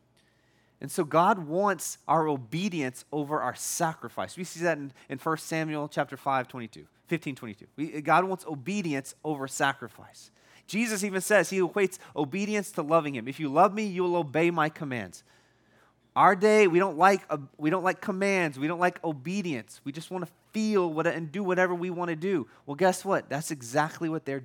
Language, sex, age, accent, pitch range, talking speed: English, male, 30-49, American, 135-200 Hz, 180 wpm